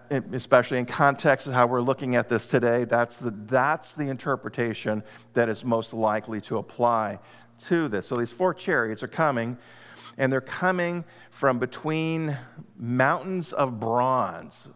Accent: American